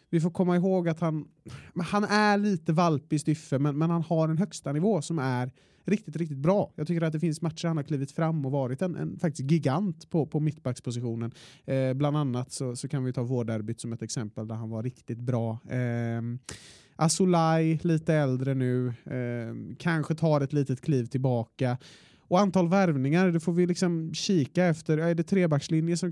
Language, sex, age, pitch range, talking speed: Swedish, male, 30-49, 125-165 Hz, 185 wpm